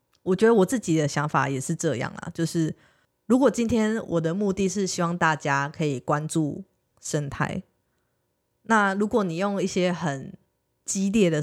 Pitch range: 155-195 Hz